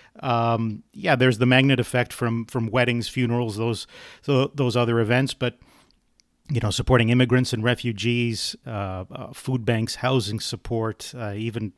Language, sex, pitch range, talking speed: English, male, 115-135 Hz, 155 wpm